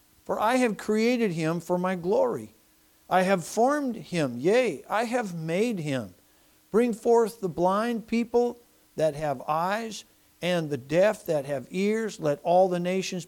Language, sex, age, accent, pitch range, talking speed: English, male, 60-79, American, 165-225 Hz, 160 wpm